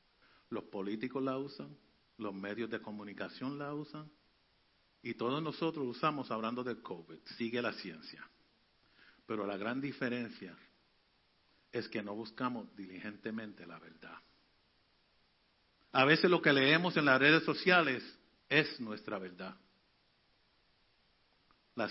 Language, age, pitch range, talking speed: Spanish, 50-69, 110-155 Hz, 120 wpm